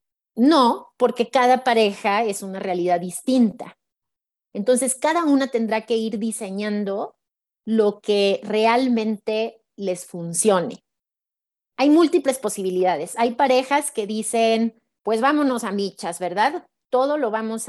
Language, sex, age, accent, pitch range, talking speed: Spanish, female, 30-49, Mexican, 195-245 Hz, 120 wpm